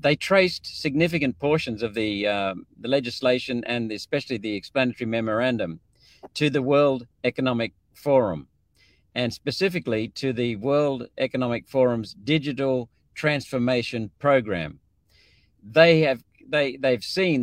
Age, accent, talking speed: 50-69, Australian, 115 wpm